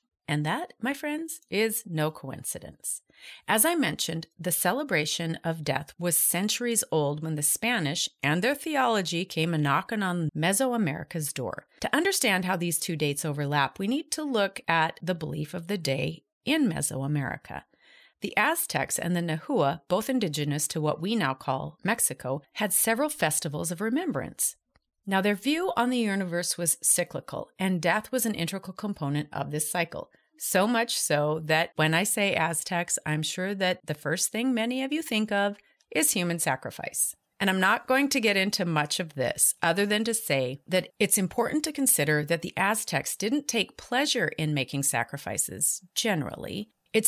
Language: English